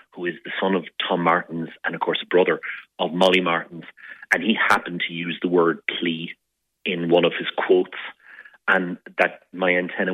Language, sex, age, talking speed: English, male, 30-49, 190 wpm